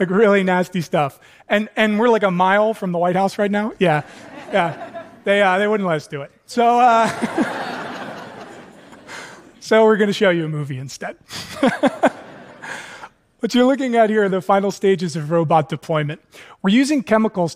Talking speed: 175 wpm